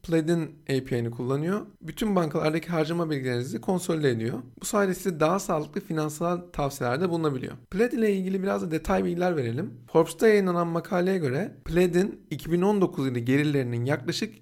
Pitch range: 140-190 Hz